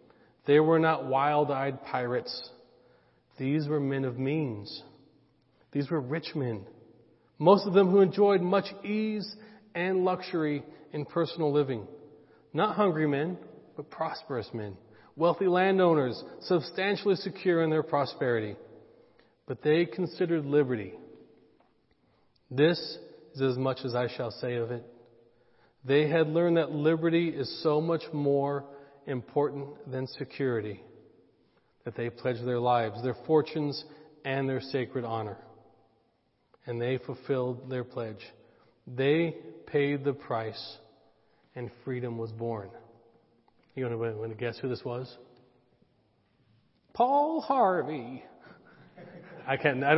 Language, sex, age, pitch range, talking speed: English, male, 40-59, 125-160 Hz, 120 wpm